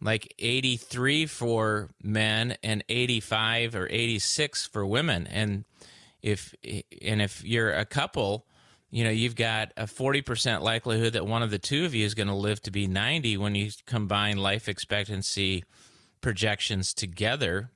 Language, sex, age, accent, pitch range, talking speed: English, male, 30-49, American, 100-120 Hz, 150 wpm